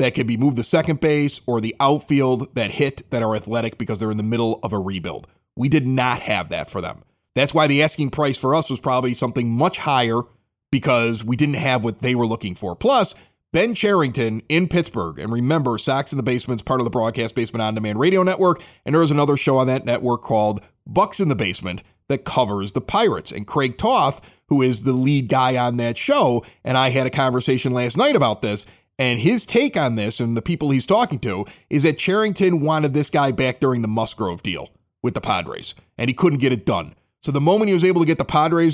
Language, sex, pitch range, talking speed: English, male, 120-175 Hz, 230 wpm